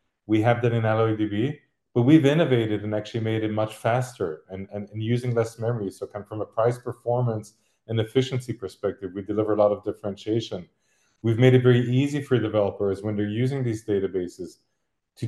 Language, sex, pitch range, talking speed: English, male, 105-130 Hz, 195 wpm